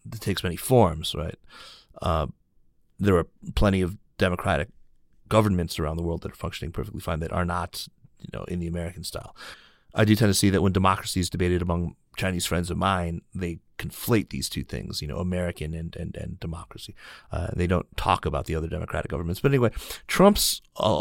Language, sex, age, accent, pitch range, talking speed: English, male, 30-49, American, 85-100 Hz, 195 wpm